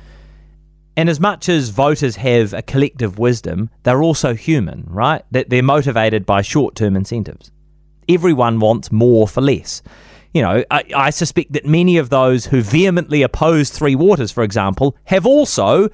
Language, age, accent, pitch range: English, 30-49, Australian, 125-165 Hz